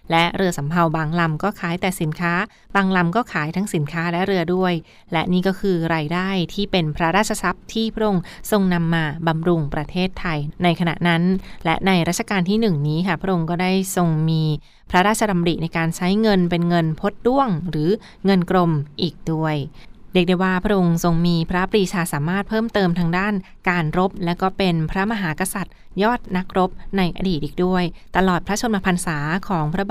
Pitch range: 170-195 Hz